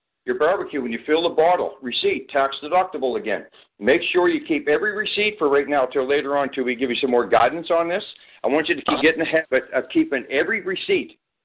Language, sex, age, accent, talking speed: English, male, 60-79, American, 230 wpm